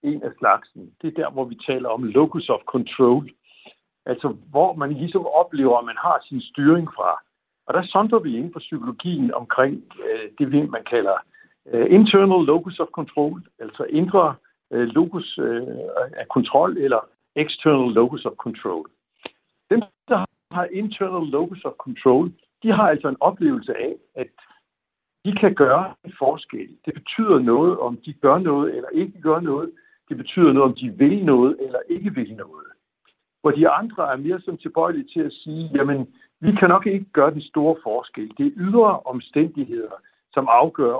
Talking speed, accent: 175 wpm, native